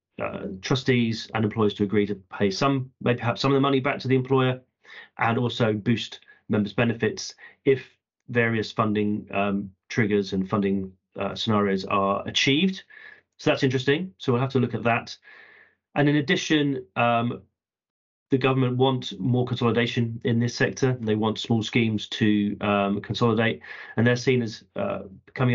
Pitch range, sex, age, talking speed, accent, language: 105-130 Hz, male, 30-49, 160 wpm, British, English